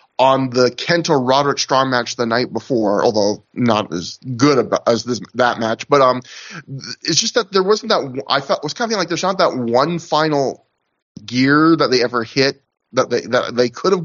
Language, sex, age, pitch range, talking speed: English, male, 30-49, 125-175 Hz, 205 wpm